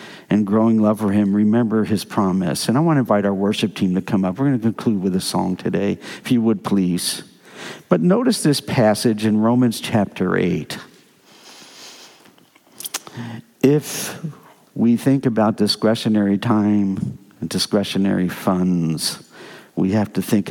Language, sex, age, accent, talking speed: English, male, 60-79, American, 150 wpm